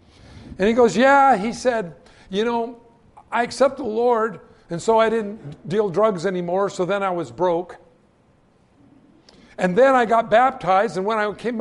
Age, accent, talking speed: 60-79, American, 170 wpm